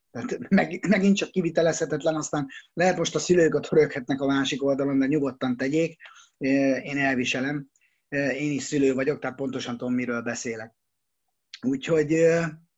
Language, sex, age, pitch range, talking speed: Hungarian, male, 30-49, 140-180 Hz, 125 wpm